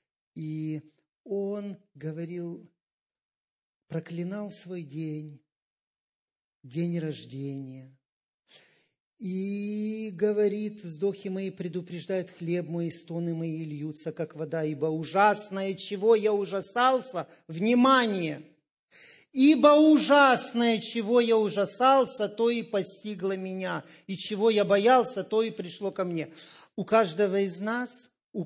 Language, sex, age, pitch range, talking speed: Russian, male, 40-59, 160-215 Hz, 105 wpm